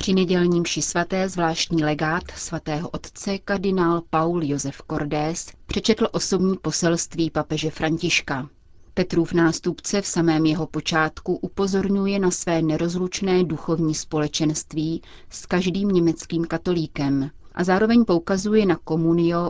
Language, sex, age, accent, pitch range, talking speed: Czech, female, 30-49, native, 155-180 Hz, 115 wpm